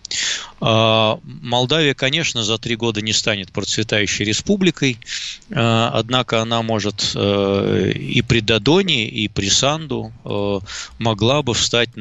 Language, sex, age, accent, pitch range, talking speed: Russian, male, 20-39, native, 105-135 Hz, 105 wpm